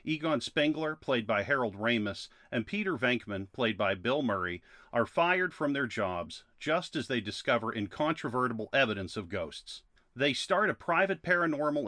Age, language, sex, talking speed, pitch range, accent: 40-59, English, male, 155 wpm, 105-160 Hz, American